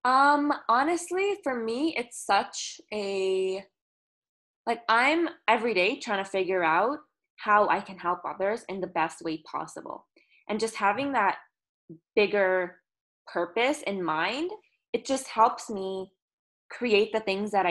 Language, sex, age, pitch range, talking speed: English, female, 20-39, 170-225 Hz, 140 wpm